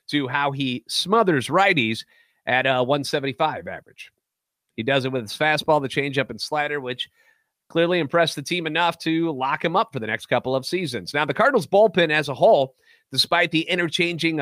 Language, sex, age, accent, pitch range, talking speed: English, male, 30-49, American, 135-170 Hz, 185 wpm